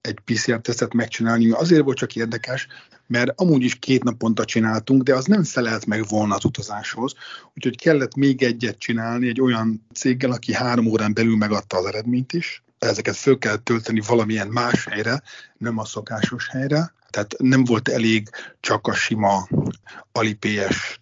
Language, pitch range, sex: Hungarian, 110-130 Hz, male